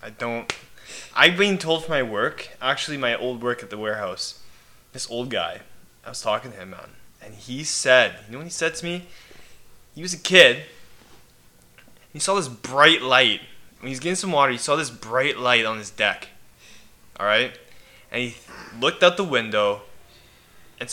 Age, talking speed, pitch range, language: 20-39, 185 wpm, 115-160 Hz, English